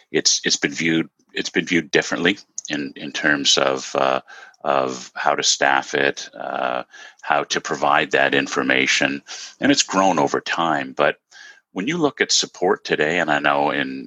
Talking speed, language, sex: 170 wpm, English, male